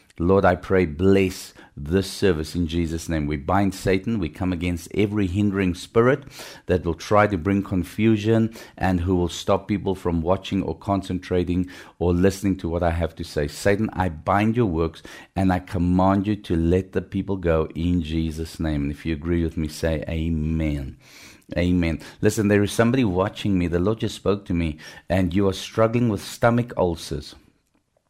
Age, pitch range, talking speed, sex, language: 50-69, 90-105 Hz, 185 wpm, male, English